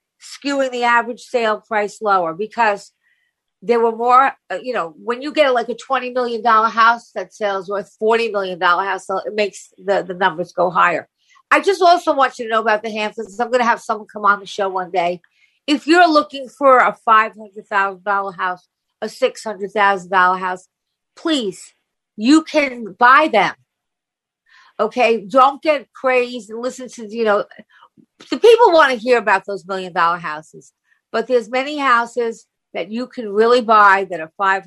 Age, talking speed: 50-69, 175 wpm